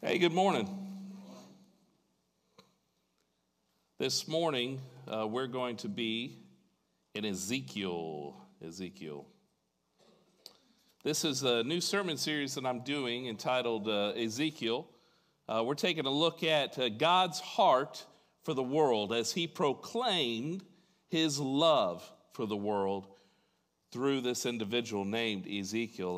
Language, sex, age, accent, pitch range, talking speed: English, male, 40-59, American, 110-155 Hz, 115 wpm